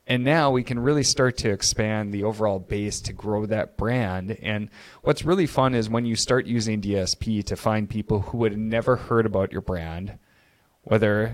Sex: male